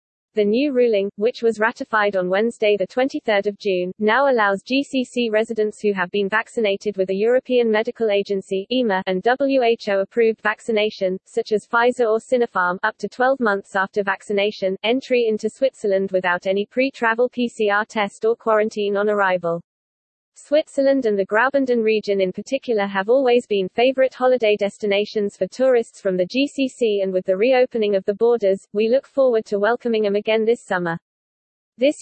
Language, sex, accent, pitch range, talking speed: English, female, British, 200-245 Hz, 160 wpm